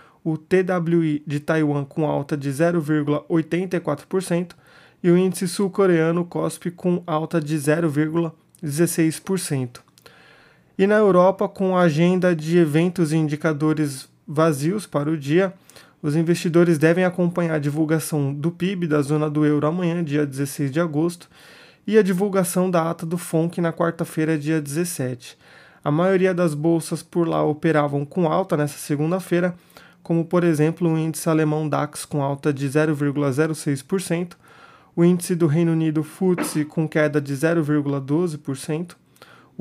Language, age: Portuguese, 20-39